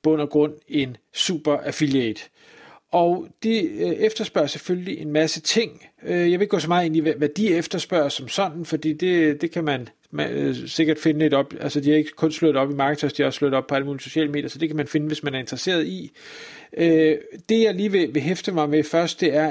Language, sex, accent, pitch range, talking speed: Danish, male, native, 150-180 Hz, 230 wpm